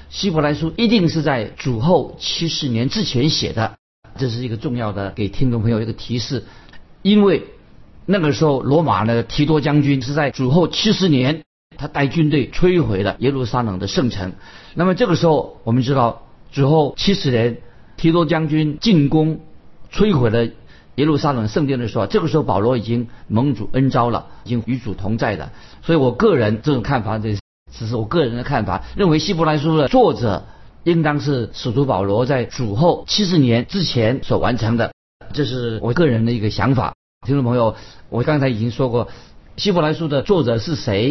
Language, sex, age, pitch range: Chinese, male, 50-69, 115-155 Hz